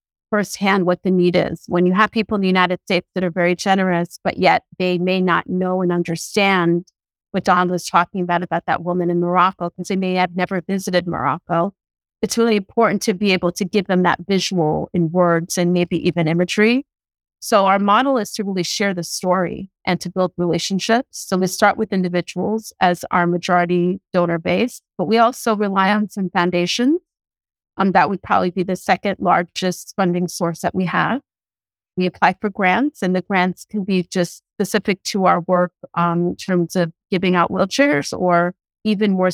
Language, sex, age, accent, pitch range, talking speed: English, female, 30-49, American, 175-200 Hz, 190 wpm